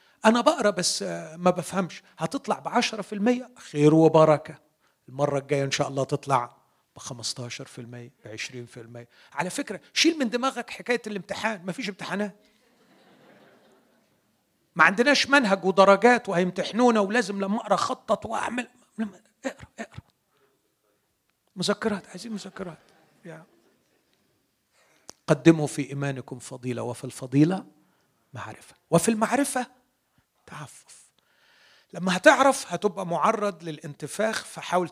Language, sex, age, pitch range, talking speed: Arabic, male, 40-59, 140-215 Hz, 110 wpm